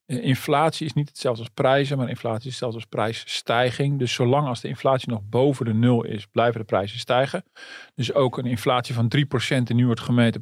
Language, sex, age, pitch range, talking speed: Dutch, male, 40-59, 115-145 Hz, 205 wpm